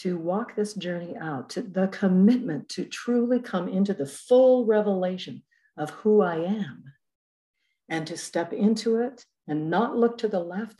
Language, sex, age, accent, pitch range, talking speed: English, female, 60-79, American, 165-215 Hz, 165 wpm